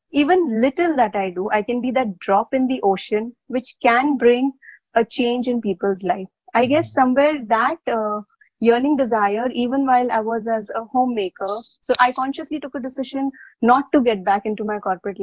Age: 20-39